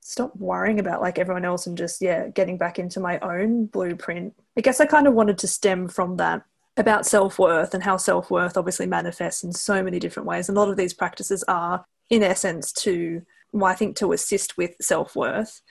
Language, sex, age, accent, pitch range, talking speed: English, female, 20-39, Australian, 180-225 Hz, 205 wpm